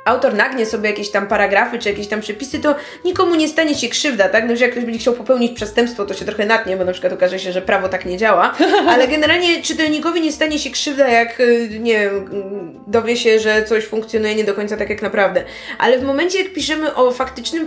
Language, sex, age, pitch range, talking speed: Polish, female, 20-39, 225-290 Hz, 230 wpm